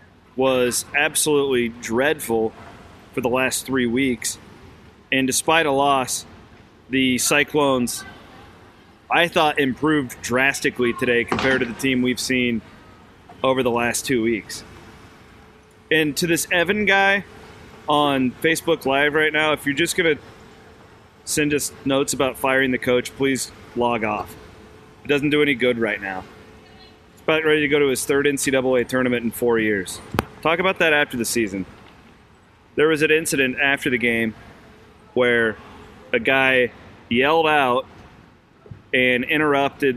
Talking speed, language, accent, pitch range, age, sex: 140 wpm, English, American, 110-140 Hz, 30-49, male